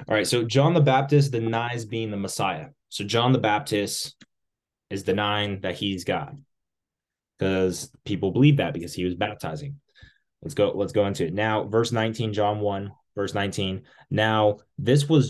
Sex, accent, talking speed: male, American, 170 wpm